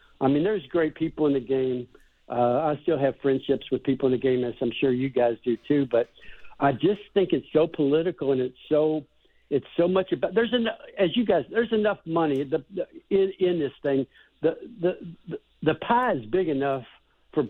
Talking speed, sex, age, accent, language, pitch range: 215 wpm, male, 60-79, American, English, 135-170 Hz